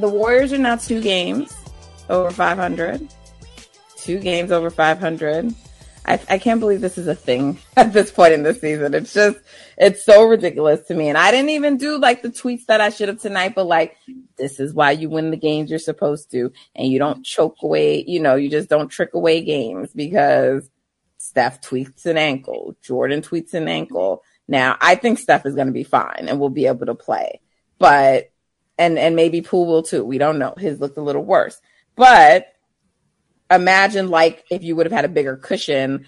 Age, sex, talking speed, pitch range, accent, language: 30-49, female, 200 wpm, 145-195 Hz, American, English